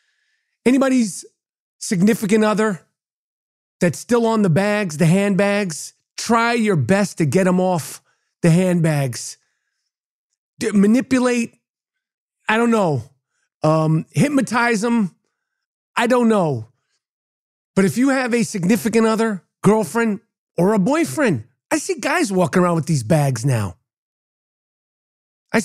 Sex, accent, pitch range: male, American, 180-265 Hz